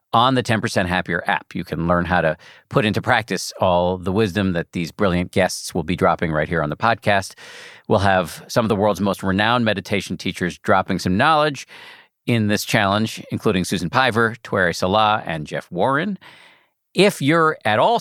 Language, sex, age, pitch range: English, male, 50-69, 90-120 Hz